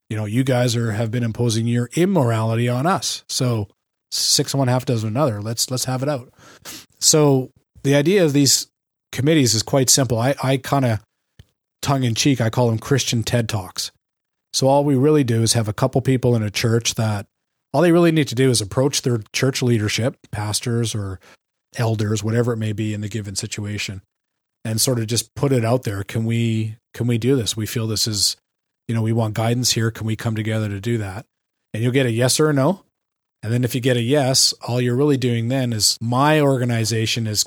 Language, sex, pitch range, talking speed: English, male, 110-130 Hz, 220 wpm